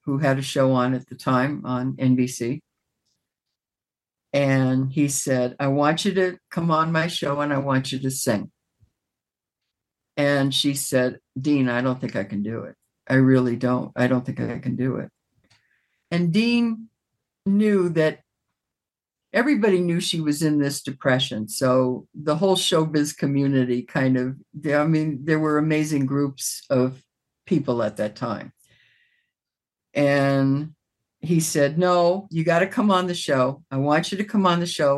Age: 60-79